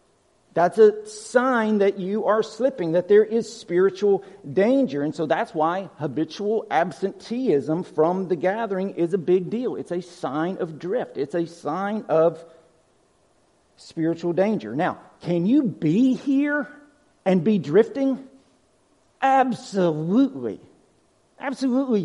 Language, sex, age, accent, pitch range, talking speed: English, male, 50-69, American, 145-210 Hz, 125 wpm